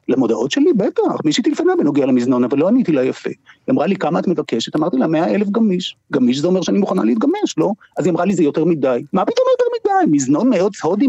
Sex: male